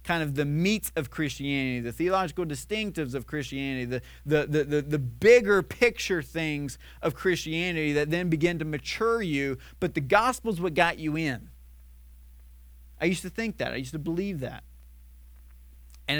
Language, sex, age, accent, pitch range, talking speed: English, male, 40-59, American, 130-195 Hz, 165 wpm